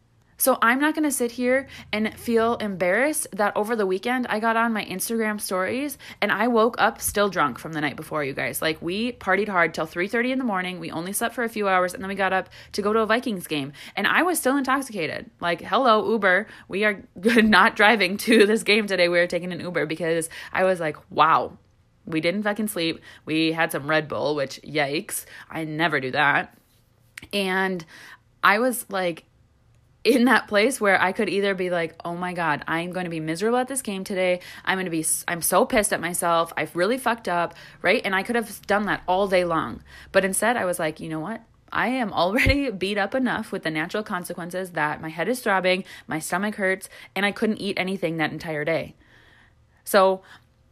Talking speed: 215 wpm